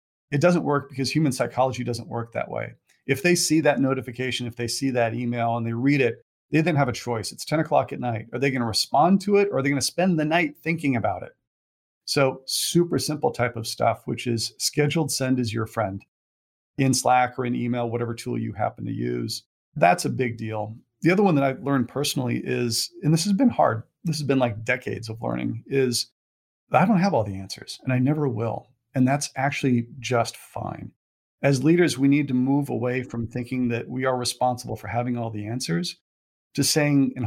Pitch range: 115-140 Hz